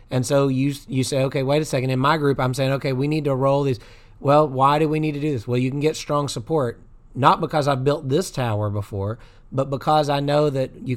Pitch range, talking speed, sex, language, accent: 125-145 Hz, 255 wpm, male, English, American